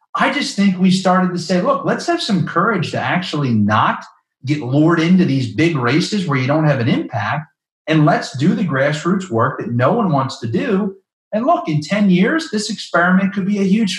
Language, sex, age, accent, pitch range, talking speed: English, male, 30-49, American, 125-195 Hz, 215 wpm